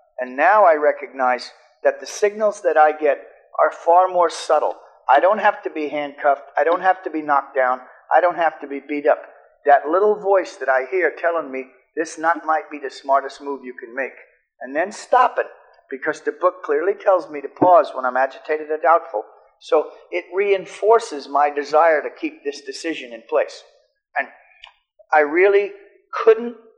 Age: 50-69